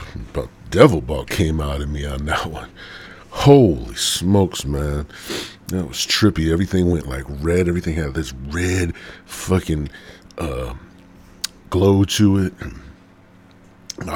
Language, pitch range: English, 85-100 Hz